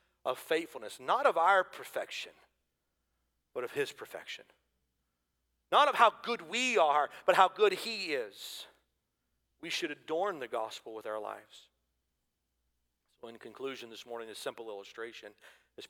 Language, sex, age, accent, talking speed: English, male, 40-59, American, 145 wpm